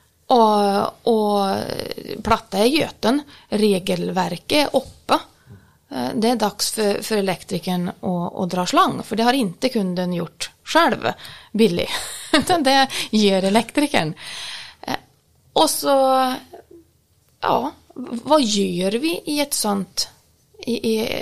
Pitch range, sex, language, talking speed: 190-255 Hz, female, Swedish, 100 wpm